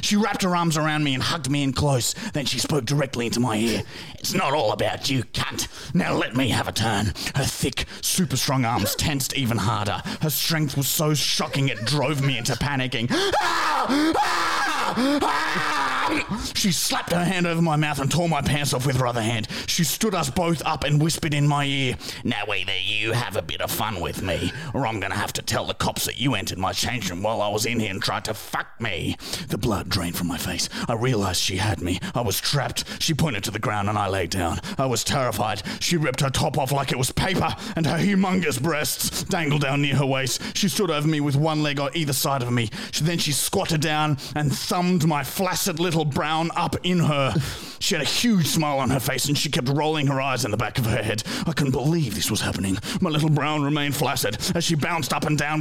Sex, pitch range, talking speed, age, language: male, 125-165 Hz, 235 wpm, 30-49, English